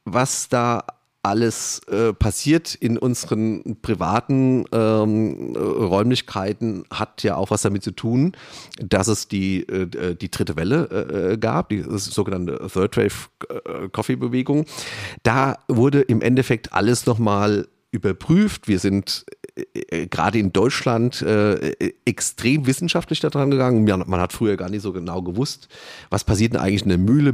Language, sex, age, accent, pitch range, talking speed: German, male, 40-59, German, 105-130 Hz, 145 wpm